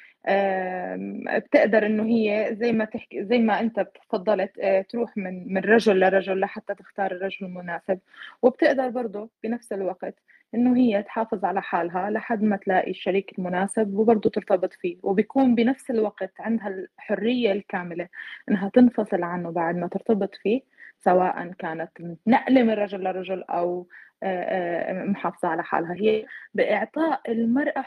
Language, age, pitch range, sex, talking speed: Arabic, 20-39, 190-255 Hz, female, 135 wpm